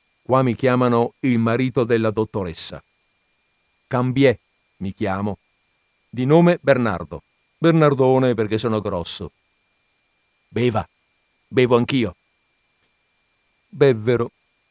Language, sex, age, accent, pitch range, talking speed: Italian, male, 50-69, native, 105-135 Hz, 85 wpm